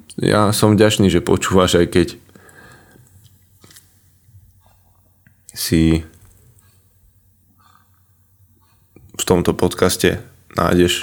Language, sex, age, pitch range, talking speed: Slovak, male, 20-39, 90-100 Hz, 65 wpm